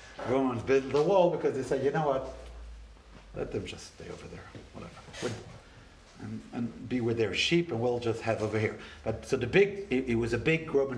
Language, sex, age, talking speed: English, male, 50-69, 215 wpm